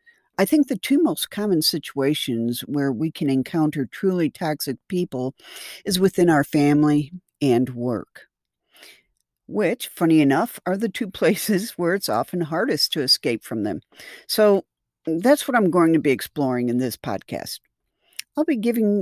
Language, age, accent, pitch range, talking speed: English, 50-69, American, 140-215 Hz, 155 wpm